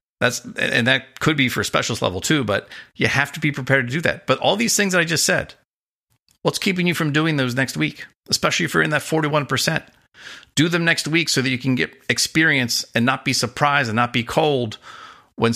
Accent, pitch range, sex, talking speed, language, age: American, 110-135 Hz, male, 230 wpm, English, 40-59